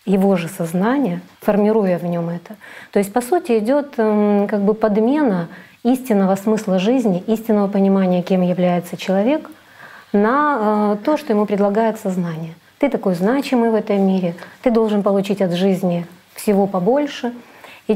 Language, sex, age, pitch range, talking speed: Russian, female, 30-49, 195-245 Hz, 145 wpm